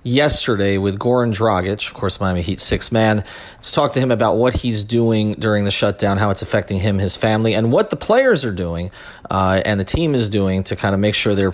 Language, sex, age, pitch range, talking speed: English, male, 30-49, 105-130 Hz, 235 wpm